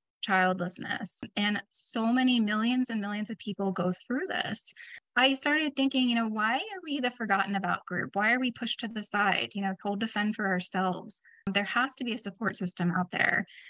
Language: English